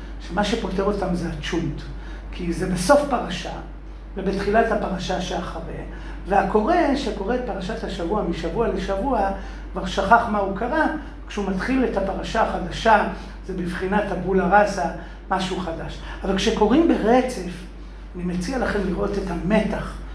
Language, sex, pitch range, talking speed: Hebrew, male, 180-220 Hz, 130 wpm